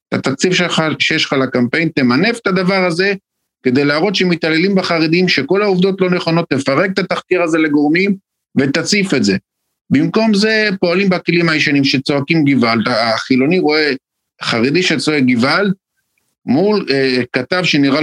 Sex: male